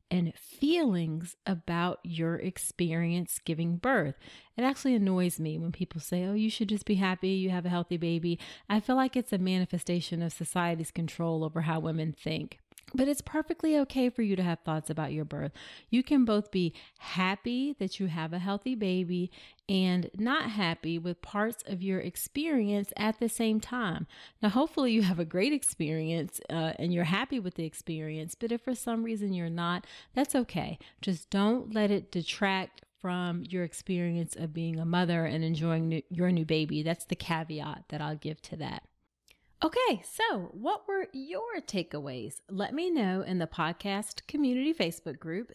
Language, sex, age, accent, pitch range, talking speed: English, female, 30-49, American, 165-225 Hz, 180 wpm